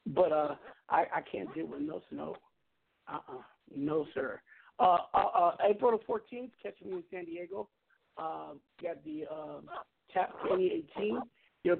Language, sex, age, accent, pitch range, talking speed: English, male, 50-69, American, 165-215 Hz, 175 wpm